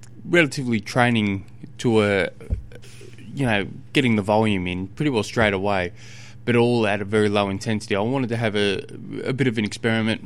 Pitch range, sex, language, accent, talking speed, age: 100-125 Hz, male, English, Australian, 180 wpm, 20-39